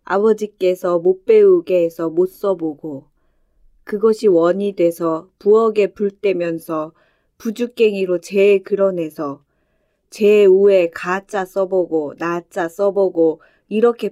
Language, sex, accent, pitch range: Korean, female, native, 175-230 Hz